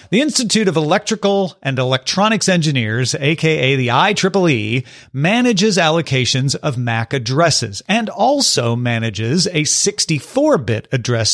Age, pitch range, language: 40-59, 130-180 Hz, English